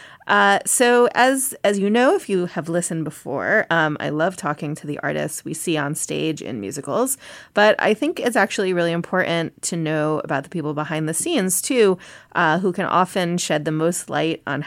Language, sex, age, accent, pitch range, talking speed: English, female, 30-49, American, 150-195 Hz, 200 wpm